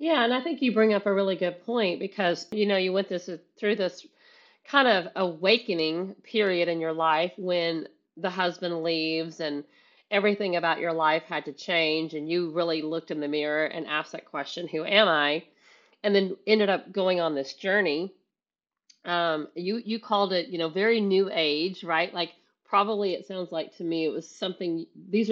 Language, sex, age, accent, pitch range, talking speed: English, female, 40-59, American, 160-200 Hz, 190 wpm